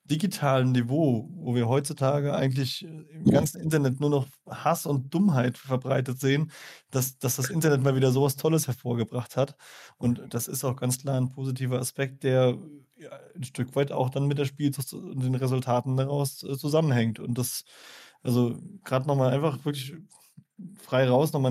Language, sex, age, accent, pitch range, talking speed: German, male, 20-39, German, 125-145 Hz, 165 wpm